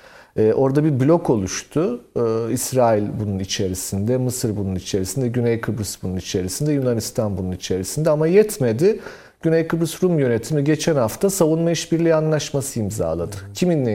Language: Turkish